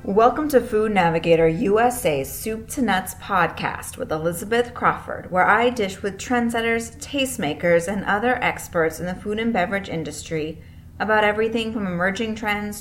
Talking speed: 150 wpm